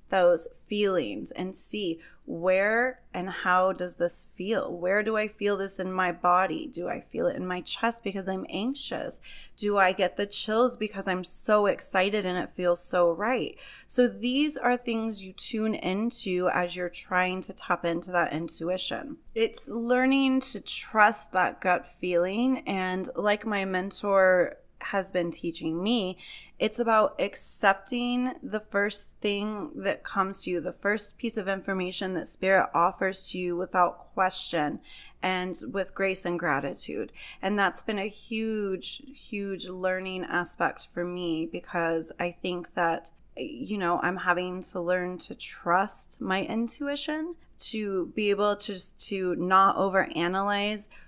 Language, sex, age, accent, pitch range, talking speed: English, female, 20-39, American, 180-215 Hz, 155 wpm